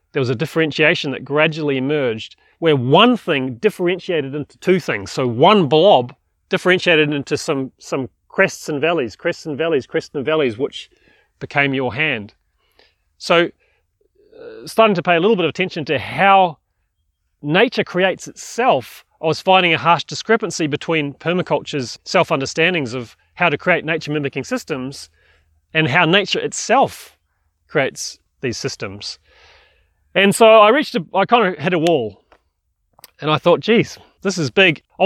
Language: English